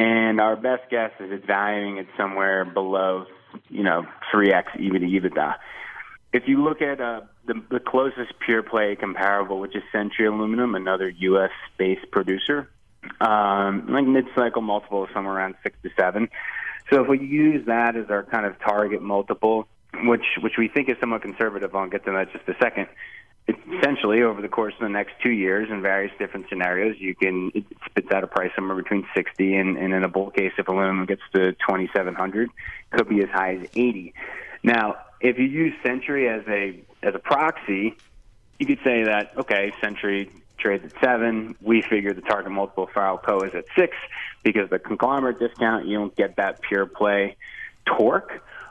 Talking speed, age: 190 wpm, 20-39